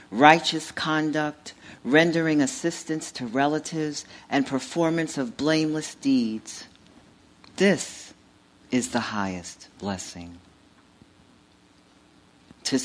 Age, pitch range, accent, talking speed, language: 50-69, 110-155 Hz, American, 80 wpm, English